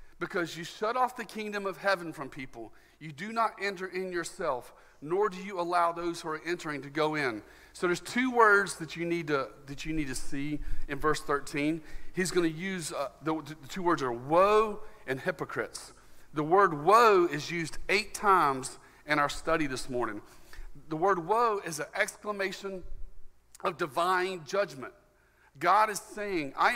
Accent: American